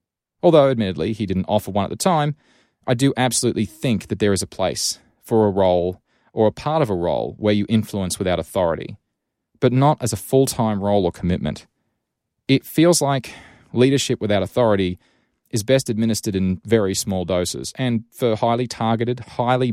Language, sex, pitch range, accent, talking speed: English, male, 100-125 Hz, Australian, 175 wpm